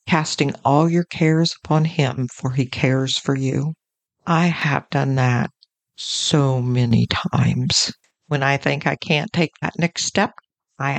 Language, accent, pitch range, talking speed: English, American, 140-175 Hz, 155 wpm